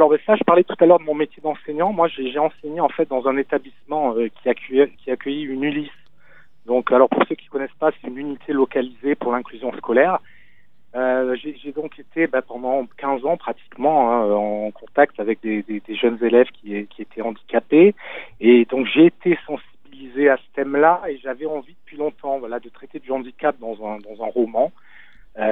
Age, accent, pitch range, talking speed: 40-59, French, 120-150 Hz, 205 wpm